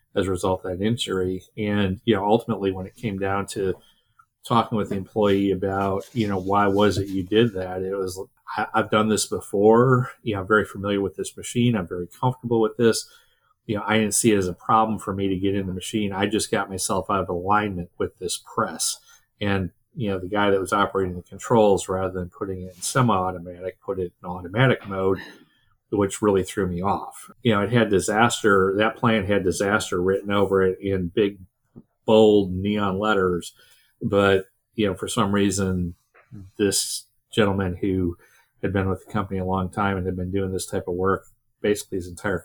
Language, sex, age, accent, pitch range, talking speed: English, male, 40-59, American, 95-105 Hz, 205 wpm